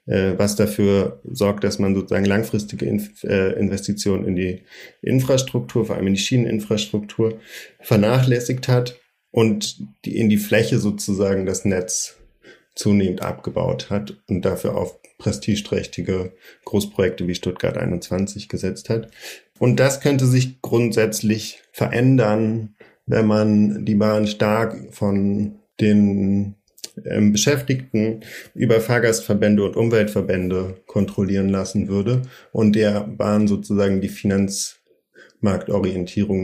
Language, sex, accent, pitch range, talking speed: German, male, German, 100-115 Hz, 105 wpm